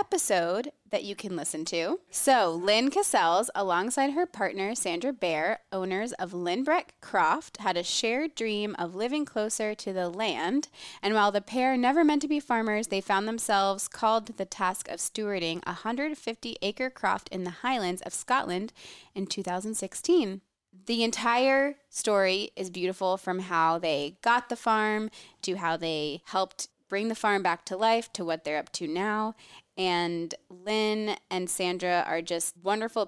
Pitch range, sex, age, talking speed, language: 180-230 Hz, female, 20-39, 165 wpm, English